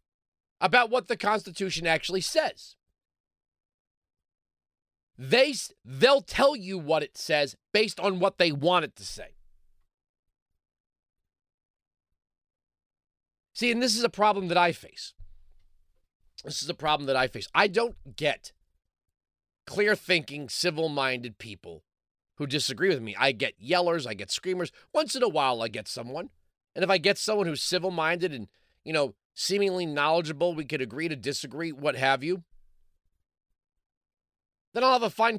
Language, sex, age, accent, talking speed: English, male, 30-49, American, 140 wpm